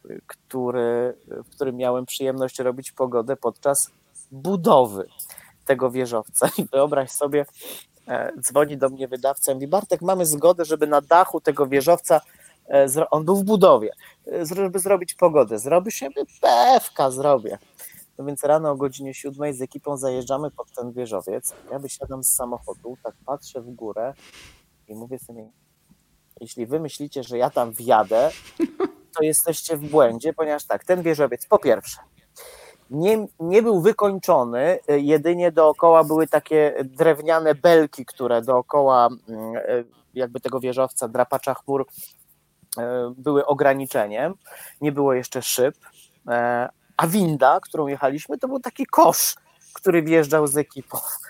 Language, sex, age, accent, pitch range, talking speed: Polish, male, 20-39, native, 130-165 Hz, 135 wpm